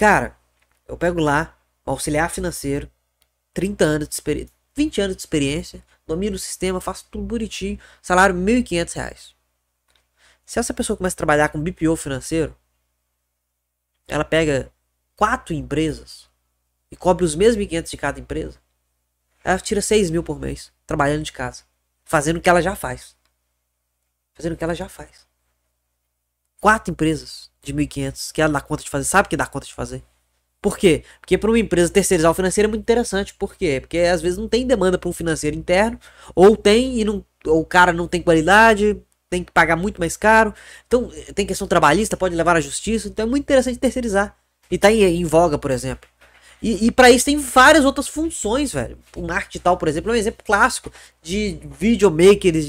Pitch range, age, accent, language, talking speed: 135-200 Hz, 20-39, Brazilian, Portuguese, 185 wpm